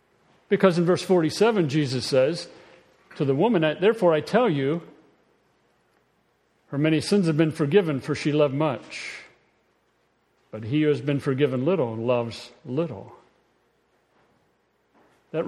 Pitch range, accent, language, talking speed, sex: 135-180 Hz, American, English, 130 wpm, male